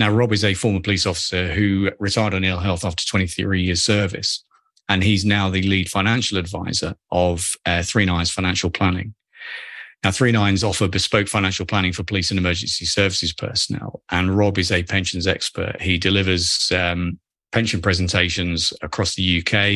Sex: male